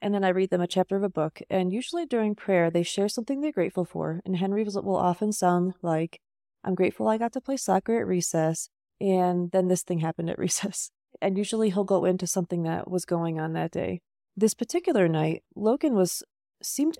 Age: 30-49